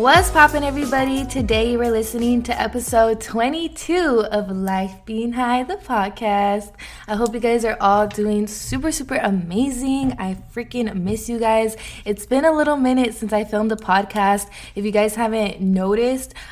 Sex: female